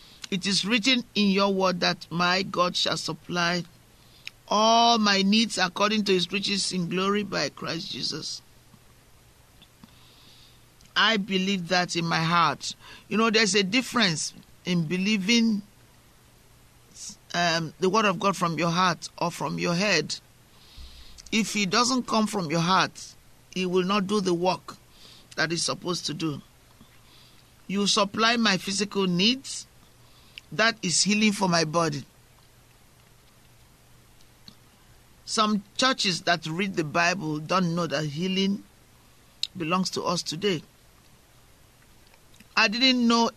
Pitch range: 170-205 Hz